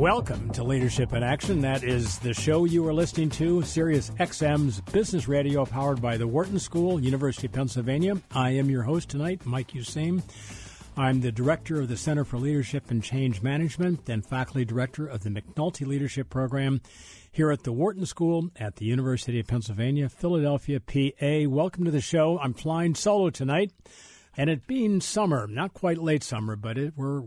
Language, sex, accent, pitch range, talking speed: English, male, American, 115-150 Hz, 180 wpm